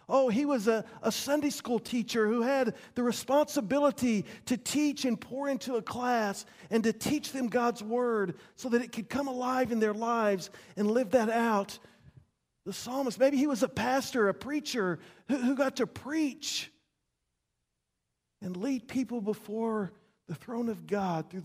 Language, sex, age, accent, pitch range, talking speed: English, male, 40-59, American, 200-260 Hz, 170 wpm